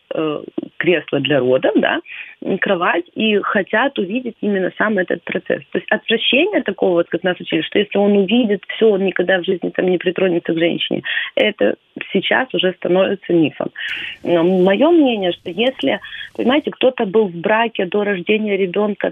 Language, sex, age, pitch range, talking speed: Ukrainian, female, 30-49, 175-230 Hz, 165 wpm